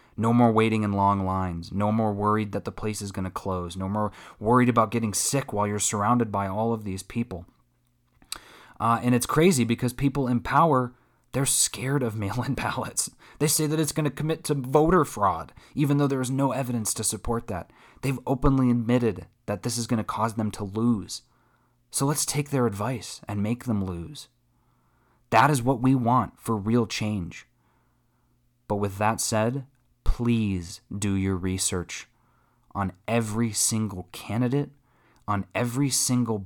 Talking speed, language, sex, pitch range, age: 175 wpm, English, male, 100-125 Hz, 30-49